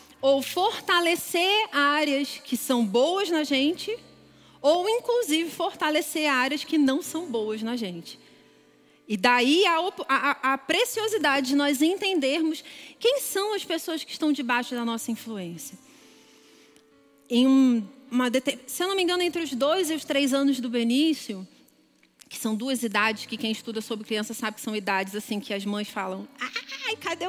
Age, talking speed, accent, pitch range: 30-49, 155 wpm, Brazilian, 235-325 Hz